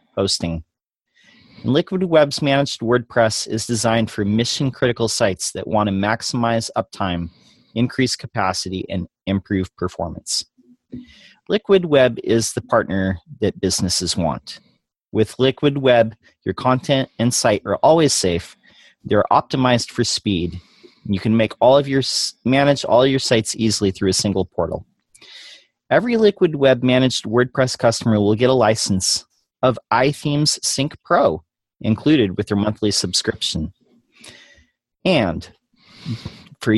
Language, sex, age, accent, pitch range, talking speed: English, male, 40-59, American, 105-135 Hz, 130 wpm